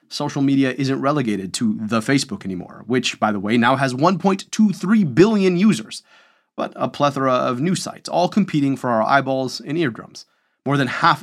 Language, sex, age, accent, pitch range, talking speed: English, male, 30-49, American, 120-165 Hz, 175 wpm